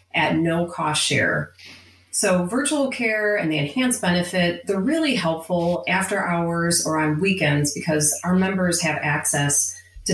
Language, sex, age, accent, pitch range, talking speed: English, female, 30-49, American, 145-180 Hz, 150 wpm